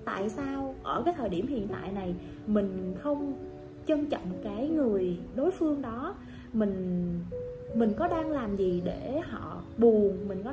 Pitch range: 210-280 Hz